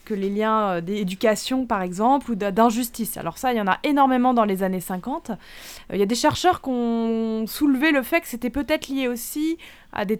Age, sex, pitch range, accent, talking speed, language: 20-39, female, 195-255 Hz, French, 210 wpm, French